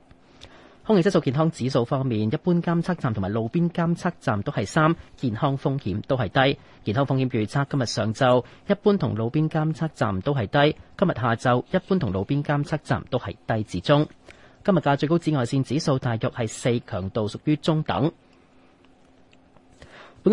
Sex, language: male, Chinese